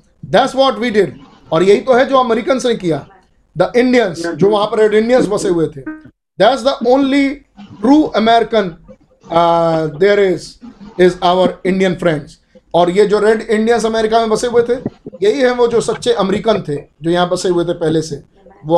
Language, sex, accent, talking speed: Hindi, male, native, 85 wpm